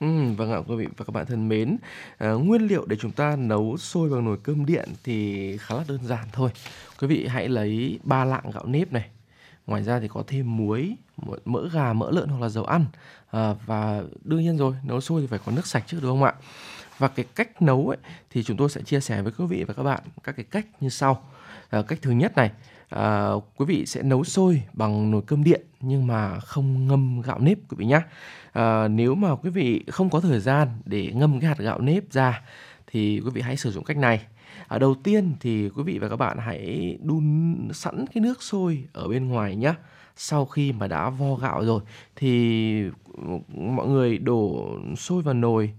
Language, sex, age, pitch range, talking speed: Vietnamese, male, 20-39, 110-150 Hz, 225 wpm